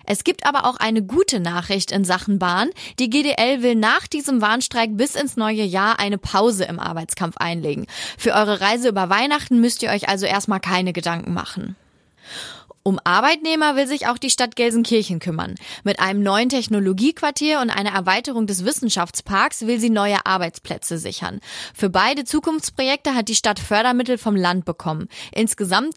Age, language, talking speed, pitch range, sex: 20-39, German, 165 wpm, 195-255 Hz, female